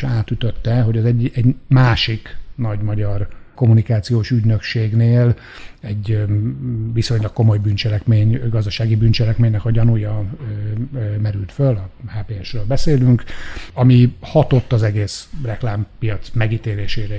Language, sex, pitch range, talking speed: Hungarian, male, 105-125 Hz, 100 wpm